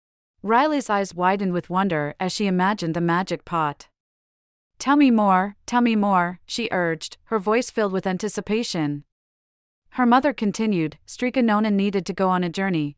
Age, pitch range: 40-59, 165-215 Hz